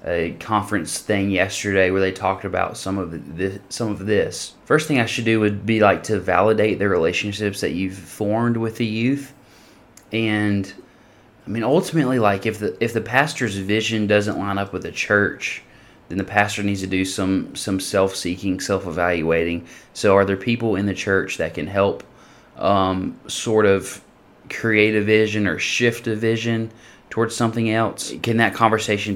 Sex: male